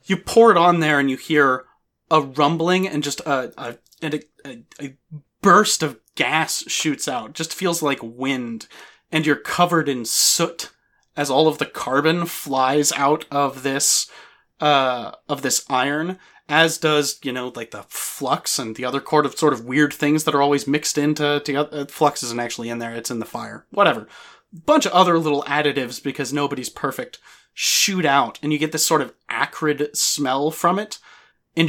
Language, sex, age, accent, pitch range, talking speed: English, male, 30-49, American, 135-155 Hz, 185 wpm